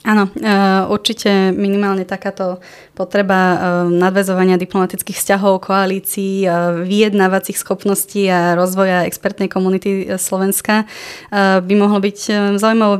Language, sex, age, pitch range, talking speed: Slovak, female, 20-39, 180-200 Hz, 90 wpm